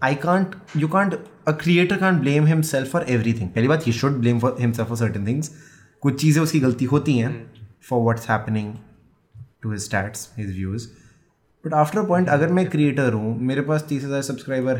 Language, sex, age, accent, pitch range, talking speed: Hindi, male, 20-39, native, 120-165 Hz, 170 wpm